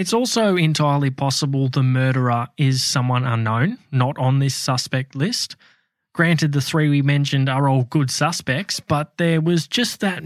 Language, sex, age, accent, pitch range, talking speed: English, male, 20-39, Australian, 130-160 Hz, 165 wpm